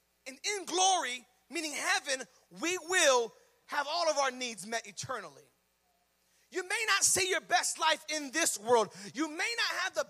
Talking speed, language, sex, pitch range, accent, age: 170 wpm, English, male, 215-335 Hz, American, 40-59